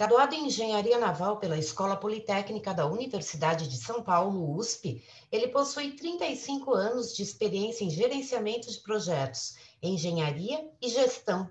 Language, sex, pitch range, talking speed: Portuguese, female, 165-230 Hz, 135 wpm